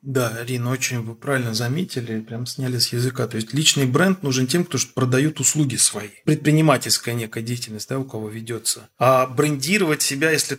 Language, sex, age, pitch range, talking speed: Russian, male, 20-39, 120-150 Hz, 180 wpm